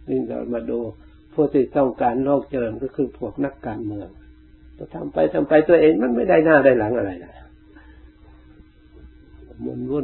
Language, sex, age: Thai, male, 60-79